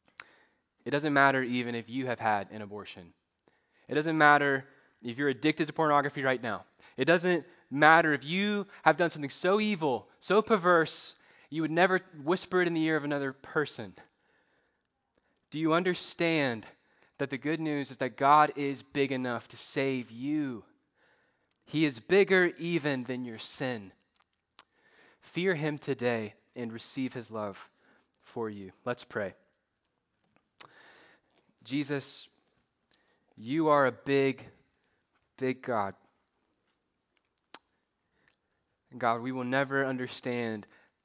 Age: 20-39